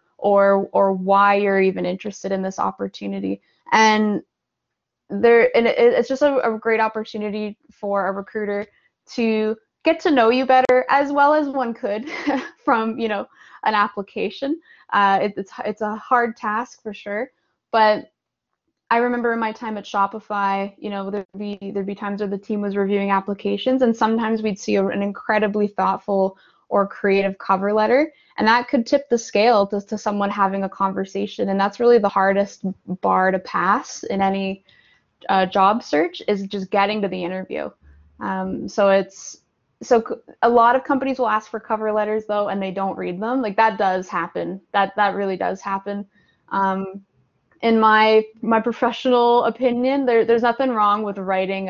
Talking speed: 175 wpm